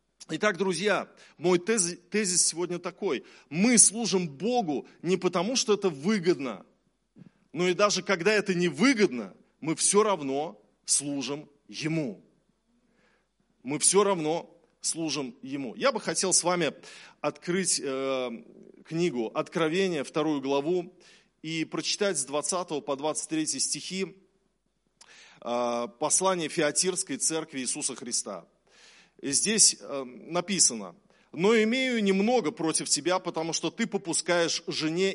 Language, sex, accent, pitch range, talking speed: Russian, male, native, 150-195 Hz, 110 wpm